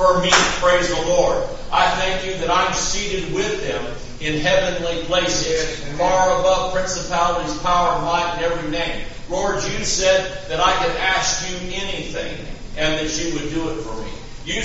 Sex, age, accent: male, 50-69, American